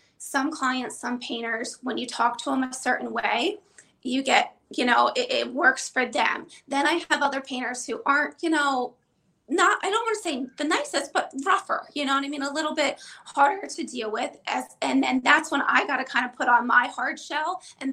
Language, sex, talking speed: English, female, 225 wpm